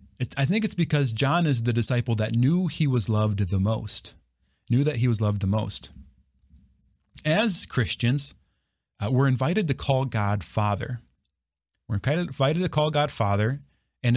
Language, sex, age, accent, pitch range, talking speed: English, male, 30-49, American, 105-145 Hz, 165 wpm